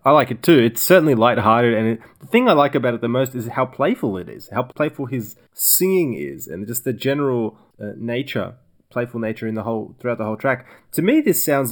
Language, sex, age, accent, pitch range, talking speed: English, male, 20-39, Australian, 105-130 Hz, 235 wpm